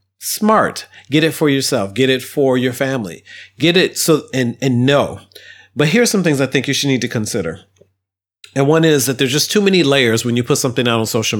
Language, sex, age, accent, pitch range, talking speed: English, male, 40-59, American, 115-145 Hz, 225 wpm